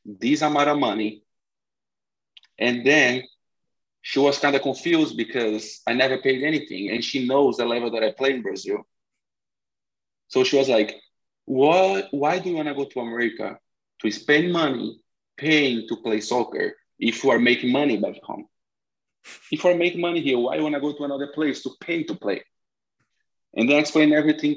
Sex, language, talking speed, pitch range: male, Swedish, 185 wpm, 115-155 Hz